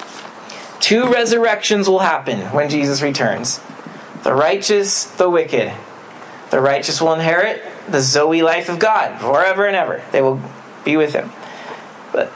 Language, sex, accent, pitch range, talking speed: English, male, American, 155-200 Hz, 140 wpm